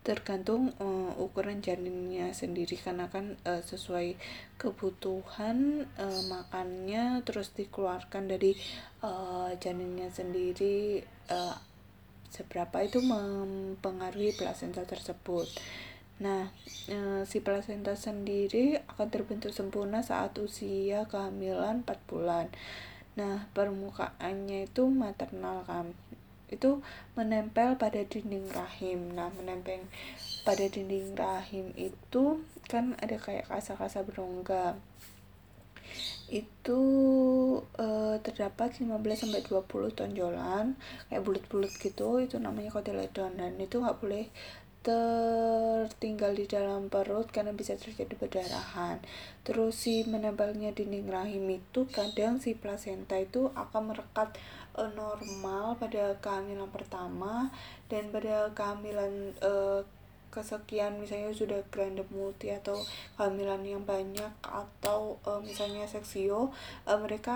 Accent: Indonesian